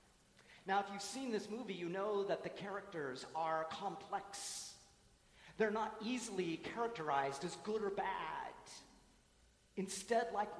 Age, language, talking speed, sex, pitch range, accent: 40-59, English, 130 wpm, male, 155-210 Hz, American